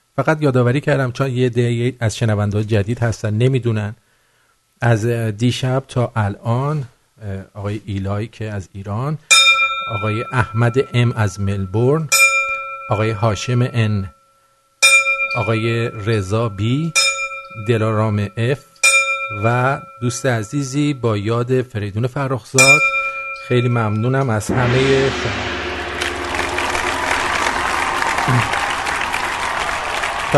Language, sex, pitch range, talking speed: English, male, 110-145 Hz, 90 wpm